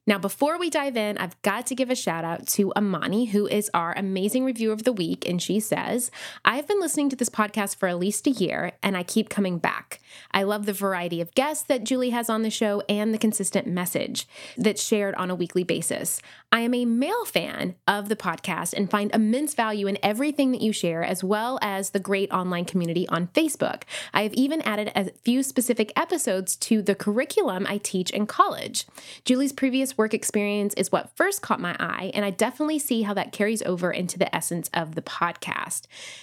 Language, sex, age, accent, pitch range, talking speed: English, female, 20-39, American, 190-245 Hz, 215 wpm